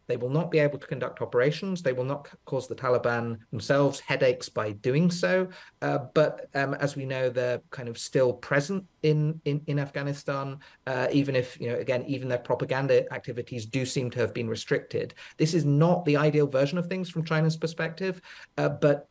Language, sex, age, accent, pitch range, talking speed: English, male, 40-59, British, 125-150 Hz, 200 wpm